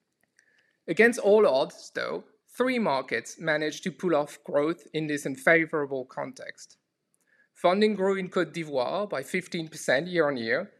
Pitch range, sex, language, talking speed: 155-200 Hz, male, English, 130 wpm